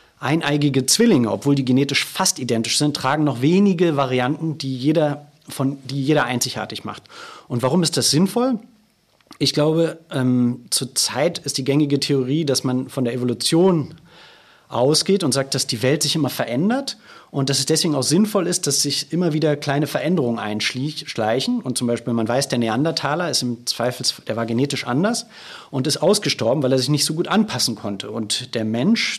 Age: 30-49